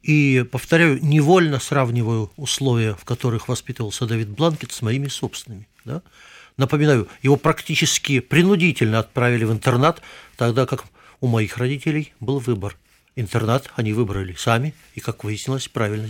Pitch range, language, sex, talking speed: 115-150 Hz, Russian, male, 130 wpm